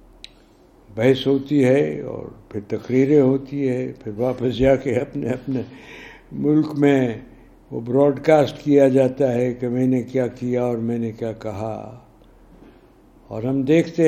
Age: 60-79